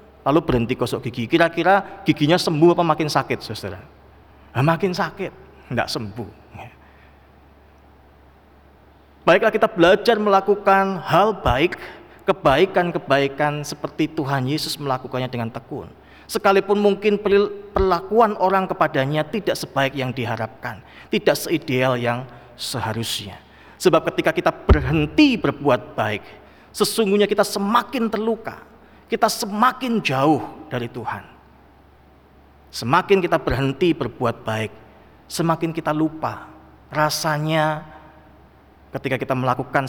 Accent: native